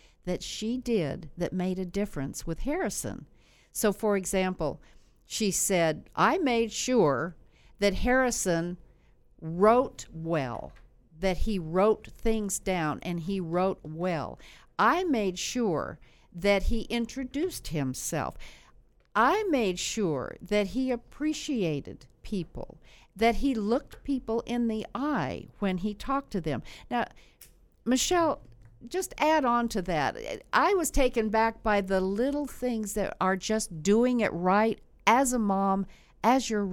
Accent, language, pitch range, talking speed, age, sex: American, English, 180-235 Hz, 135 wpm, 60-79, female